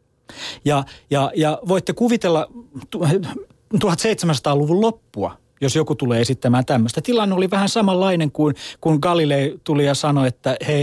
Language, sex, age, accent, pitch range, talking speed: Finnish, male, 30-49, native, 125-180 Hz, 135 wpm